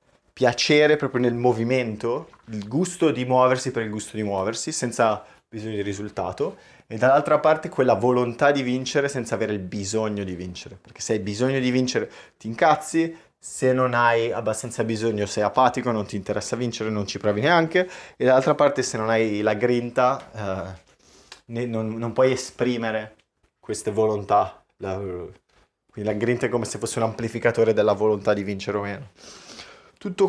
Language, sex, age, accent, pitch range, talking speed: Italian, male, 20-39, native, 105-130 Hz, 165 wpm